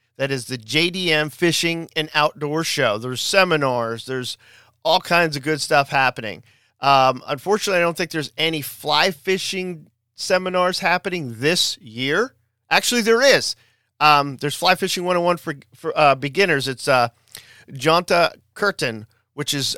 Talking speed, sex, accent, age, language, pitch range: 145 wpm, male, American, 40-59, English, 120-155 Hz